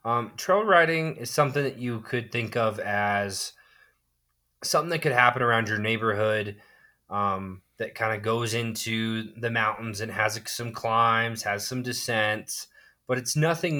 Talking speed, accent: 155 wpm, American